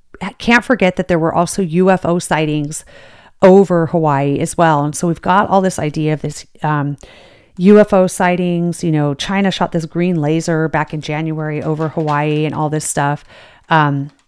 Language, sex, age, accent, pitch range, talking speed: English, female, 30-49, American, 150-180 Hz, 170 wpm